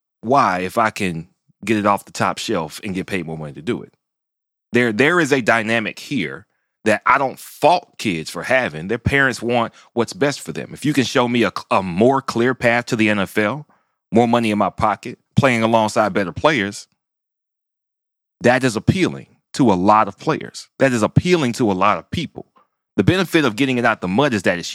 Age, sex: 30-49, male